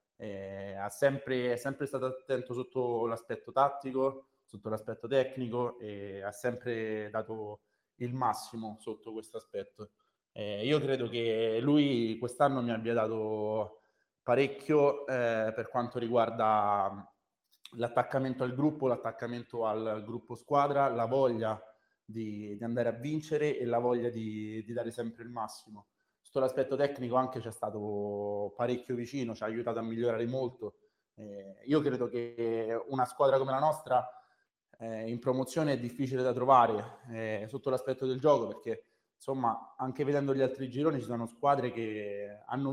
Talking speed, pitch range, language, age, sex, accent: 145 wpm, 115-135 Hz, Italian, 20-39, male, native